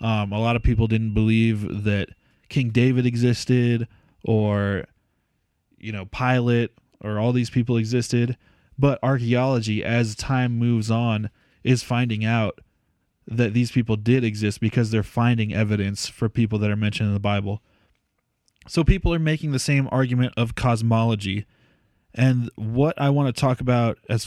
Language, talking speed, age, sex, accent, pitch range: English, 155 wpm, 20-39, male, American, 110-125 Hz